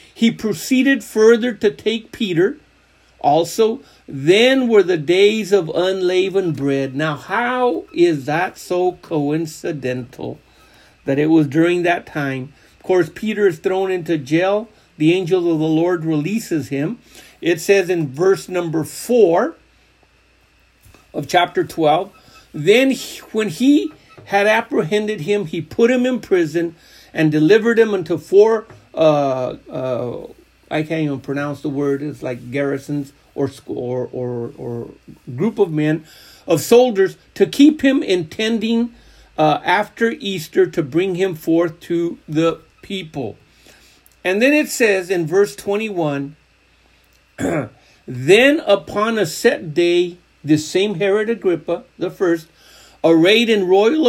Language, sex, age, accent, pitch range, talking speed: English, male, 50-69, American, 155-210 Hz, 135 wpm